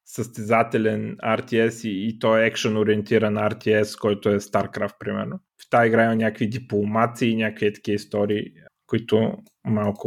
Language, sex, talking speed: Bulgarian, male, 150 wpm